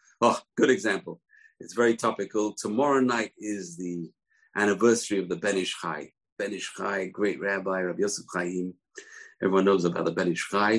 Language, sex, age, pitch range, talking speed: English, male, 50-69, 105-170 Hz, 155 wpm